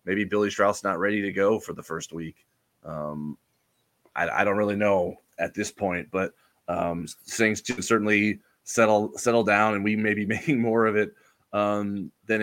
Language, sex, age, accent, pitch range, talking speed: English, male, 20-39, American, 90-110 Hz, 185 wpm